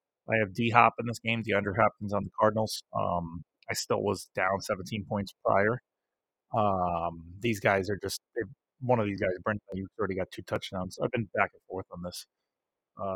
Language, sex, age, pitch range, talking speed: English, male, 30-49, 95-105 Hz, 200 wpm